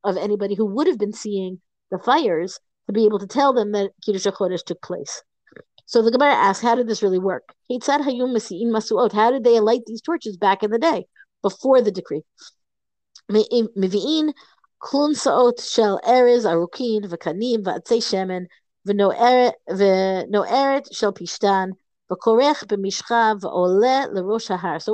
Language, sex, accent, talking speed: English, female, American, 105 wpm